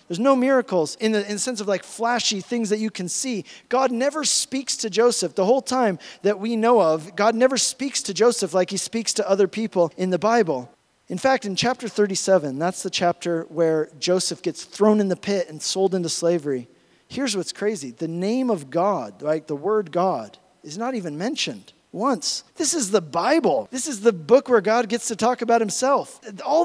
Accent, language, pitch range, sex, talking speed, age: American, English, 185-245 Hz, male, 210 wpm, 40-59